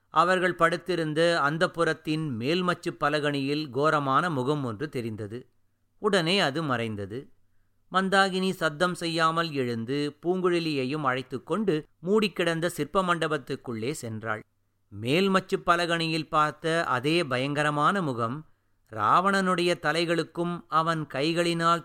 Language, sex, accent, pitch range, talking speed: Tamil, male, native, 130-175 Hz, 90 wpm